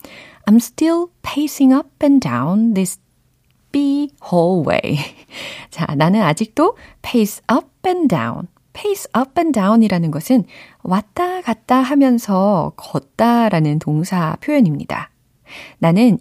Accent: native